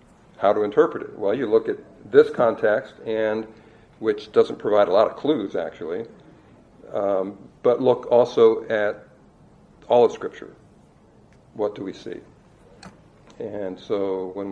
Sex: male